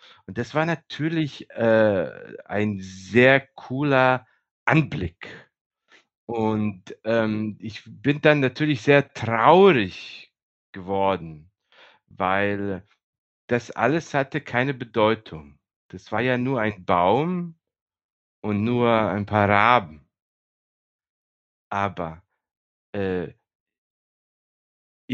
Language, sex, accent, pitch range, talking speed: German, male, German, 90-120 Hz, 90 wpm